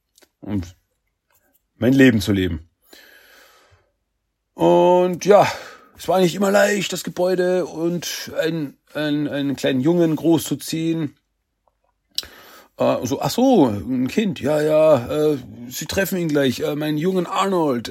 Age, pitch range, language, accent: 40-59, 125-175 Hz, German, German